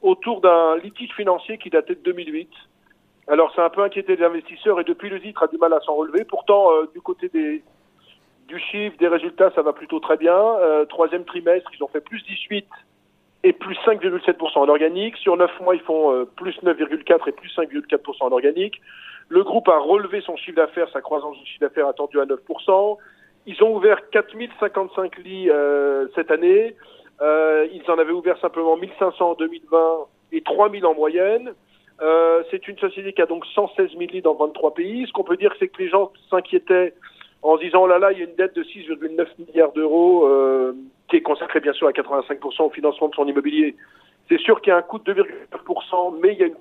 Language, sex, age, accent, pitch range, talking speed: French, male, 40-59, French, 165-250 Hz, 215 wpm